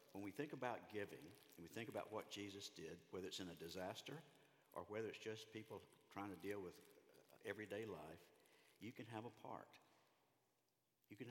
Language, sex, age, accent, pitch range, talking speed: English, male, 60-79, American, 90-115 Hz, 185 wpm